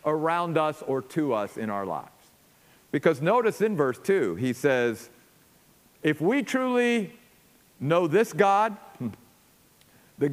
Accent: American